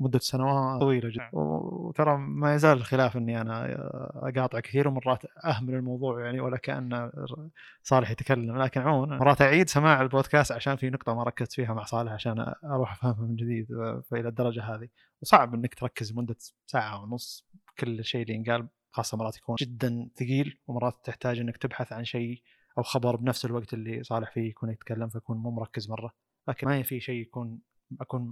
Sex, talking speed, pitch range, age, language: male, 175 wpm, 115-130 Hz, 20-39, Arabic